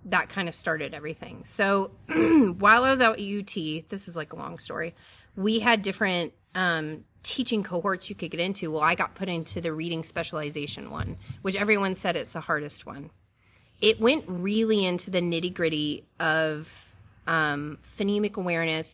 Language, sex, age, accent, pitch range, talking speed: English, female, 30-49, American, 155-195 Hz, 175 wpm